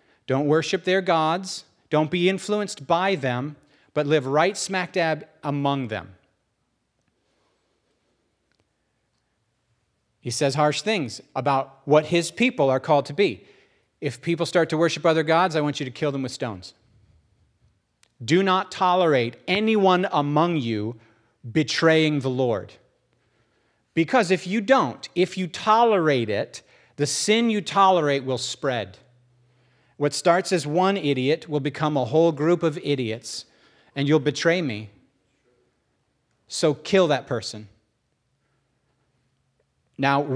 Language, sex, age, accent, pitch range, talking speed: English, male, 40-59, American, 130-170 Hz, 130 wpm